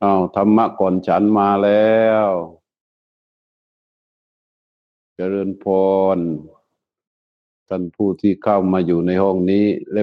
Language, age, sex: Thai, 60-79, male